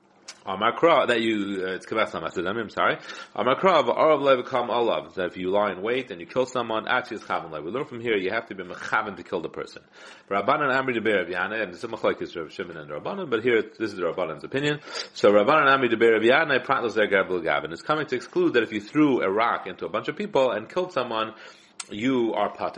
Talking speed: 255 wpm